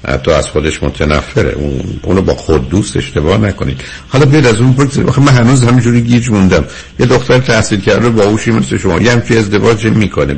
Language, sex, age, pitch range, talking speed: Persian, male, 60-79, 70-100 Hz, 190 wpm